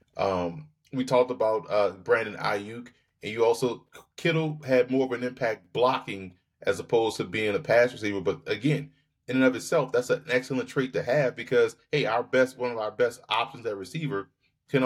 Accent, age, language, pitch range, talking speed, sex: American, 30-49, English, 115-140 Hz, 195 wpm, male